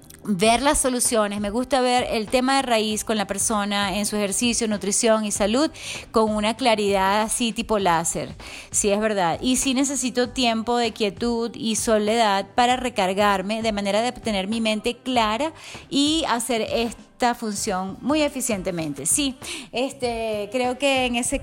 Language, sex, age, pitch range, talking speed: English, female, 30-49, 210-270 Hz, 160 wpm